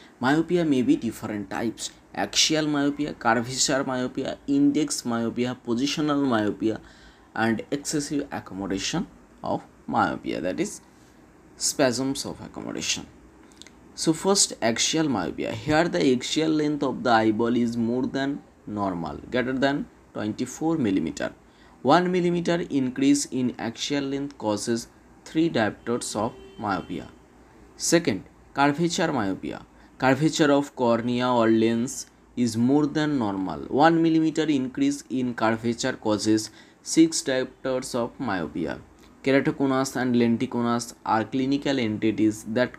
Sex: male